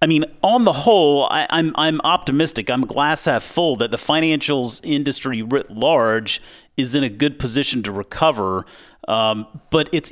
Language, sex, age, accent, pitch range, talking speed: English, male, 40-59, American, 115-150 Hz, 170 wpm